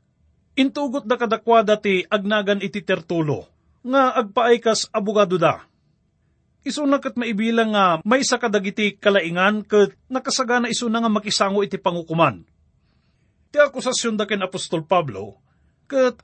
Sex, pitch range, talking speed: male, 170-240 Hz, 120 wpm